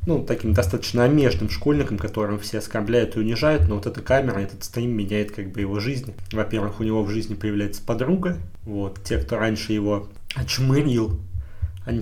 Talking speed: 175 wpm